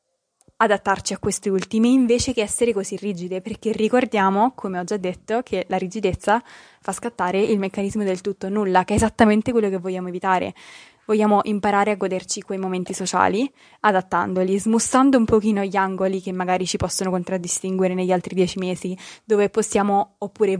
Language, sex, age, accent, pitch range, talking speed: Italian, female, 20-39, native, 190-220 Hz, 165 wpm